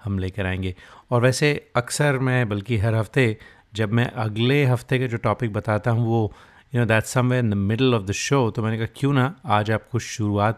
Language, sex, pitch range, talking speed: Hindi, male, 100-125 Hz, 215 wpm